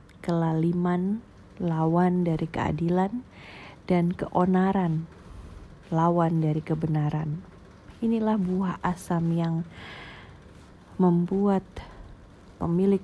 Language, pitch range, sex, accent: Indonesian, 165-185 Hz, female, native